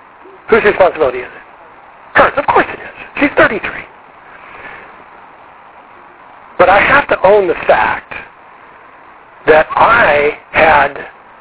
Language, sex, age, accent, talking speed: English, male, 60-79, American, 110 wpm